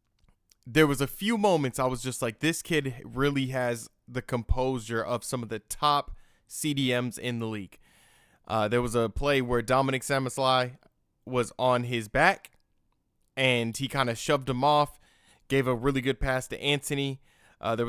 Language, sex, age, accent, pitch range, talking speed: English, male, 20-39, American, 120-145 Hz, 175 wpm